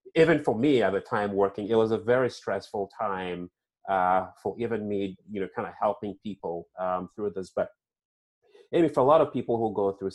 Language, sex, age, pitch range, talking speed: English, male, 30-49, 100-125 Hz, 215 wpm